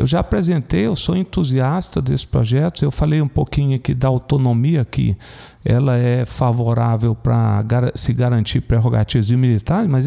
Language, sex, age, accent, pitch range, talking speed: Portuguese, male, 50-69, Brazilian, 120-185 Hz, 155 wpm